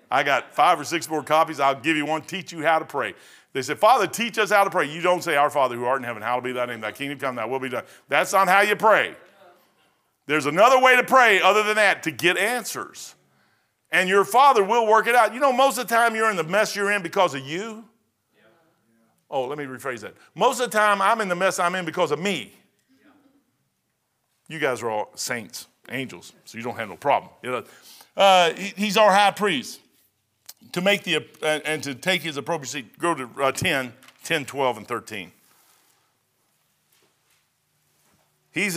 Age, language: 50-69, English